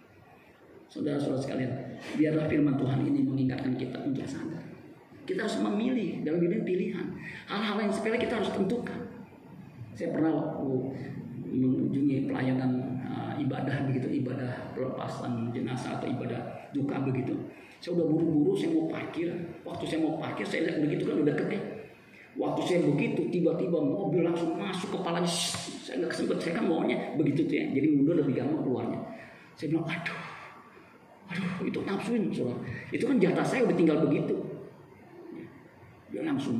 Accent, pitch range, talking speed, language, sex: native, 130-175 Hz, 145 wpm, Indonesian, male